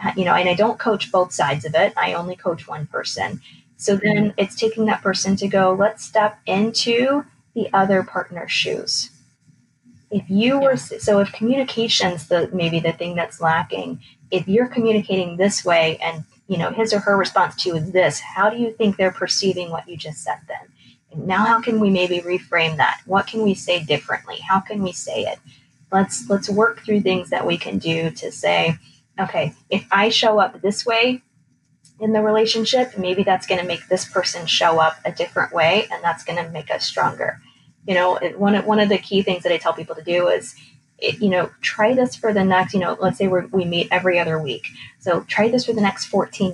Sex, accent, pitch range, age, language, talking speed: female, American, 175-215 Hz, 20-39, English, 215 wpm